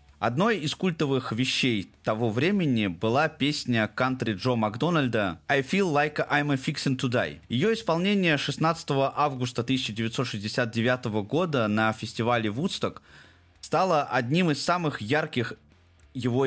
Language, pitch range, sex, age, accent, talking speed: Russian, 115-155 Hz, male, 20-39, native, 125 wpm